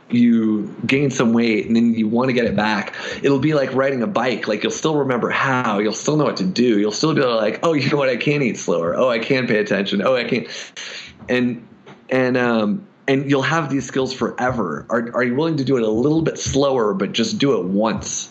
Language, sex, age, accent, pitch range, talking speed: English, male, 30-49, American, 115-150 Hz, 245 wpm